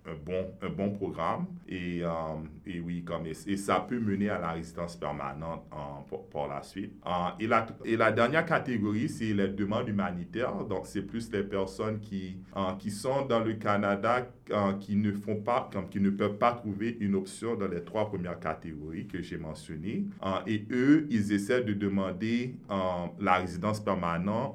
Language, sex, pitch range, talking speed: French, male, 90-110 Hz, 195 wpm